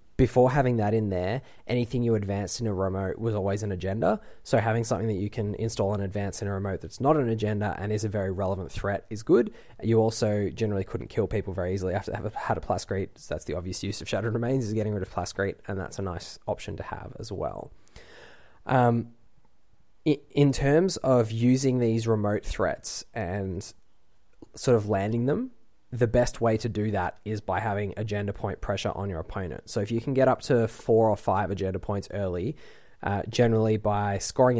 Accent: Australian